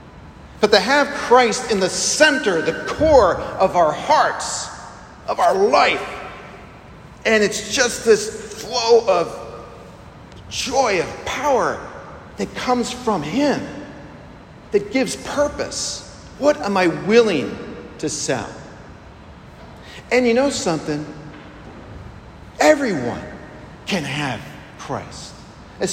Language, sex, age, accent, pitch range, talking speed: English, male, 50-69, American, 155-215 Hz, 105 wpm